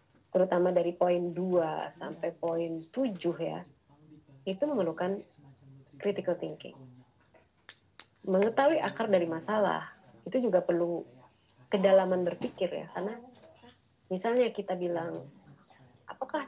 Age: 30-49